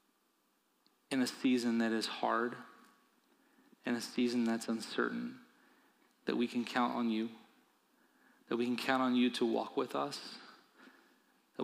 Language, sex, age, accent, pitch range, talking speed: English, male, 30-49, American, 115-130 Hz, 145 wpm